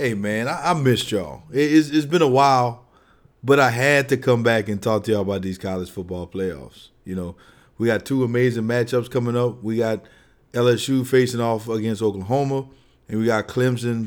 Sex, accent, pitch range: male, American, 105-130 Hz